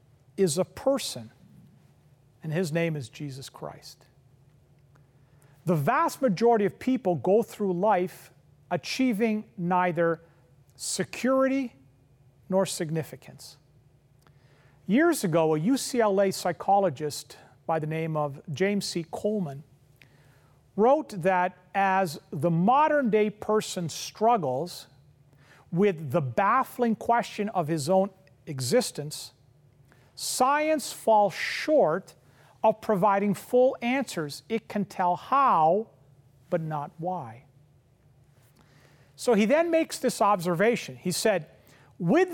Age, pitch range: 40-59, 145-225 Hz